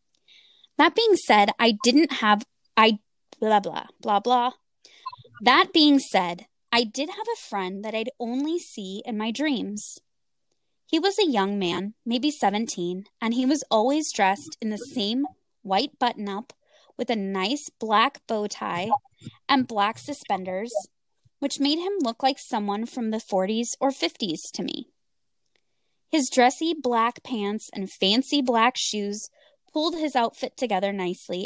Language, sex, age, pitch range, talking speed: English, female, 20-39, 205-275 Hz, 150 wpm